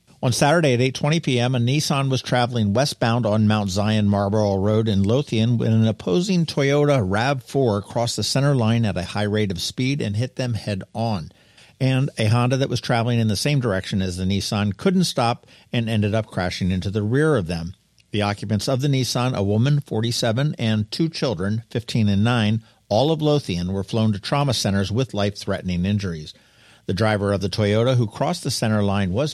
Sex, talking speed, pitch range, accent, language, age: male, 195 wpm, 100-130 Hz, American, English, 50-69